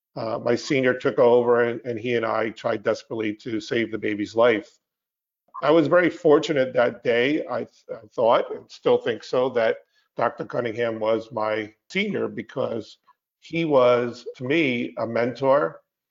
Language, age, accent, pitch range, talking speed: English, 50-69, American, 115-135 Hz, 165 wpm